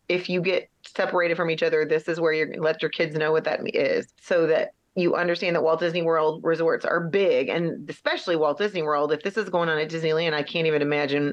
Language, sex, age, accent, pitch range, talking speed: English, female, 30-49, American, 155-195 Hz, 240 wpm